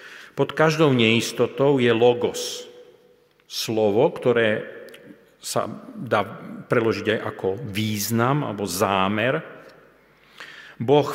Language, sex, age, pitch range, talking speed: Slovak, male, 50-69, 115-155 Hz, 85 wpm